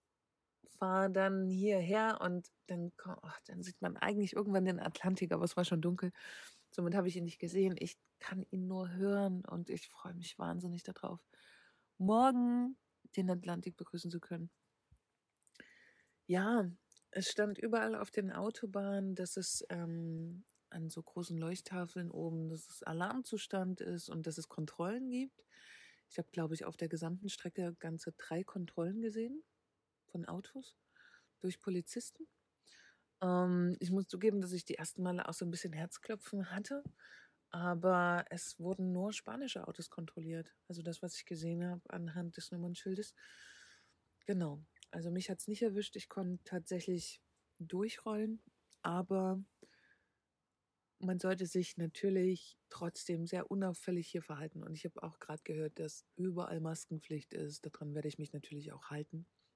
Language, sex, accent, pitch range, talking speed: German, female, German, 170-195 Hz, 150 wpm